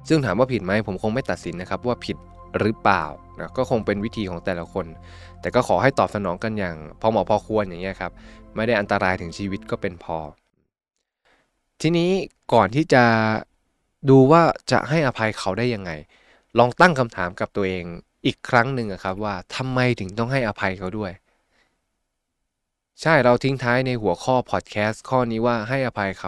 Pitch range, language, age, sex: 95-130 Hz, Thai, 20-39, male